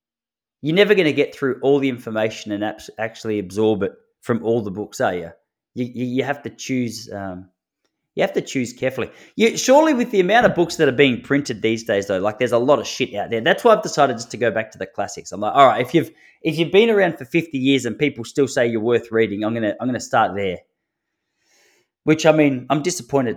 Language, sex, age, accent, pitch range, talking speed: English, male, 20-39, Australian, 115-155 Hz, 240 wpm